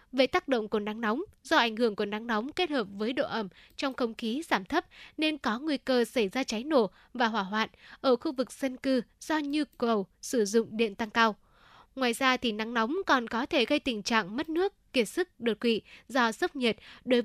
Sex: female